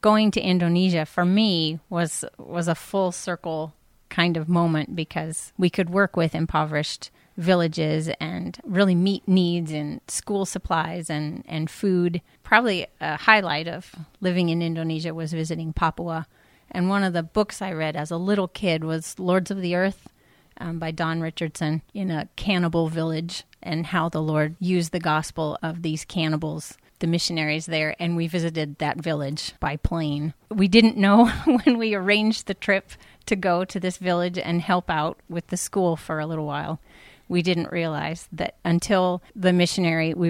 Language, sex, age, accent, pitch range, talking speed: English, female, 30-49, American, 160-190 Hz, 170 wpm